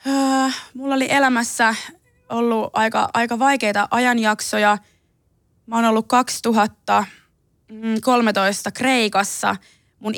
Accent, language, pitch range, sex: native, Finnish, 195-235 Hz, female